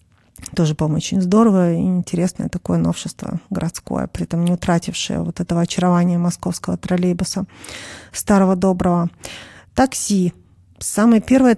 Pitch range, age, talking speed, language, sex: 180-205 Hz, 30-49, 125 wpm, Russian, female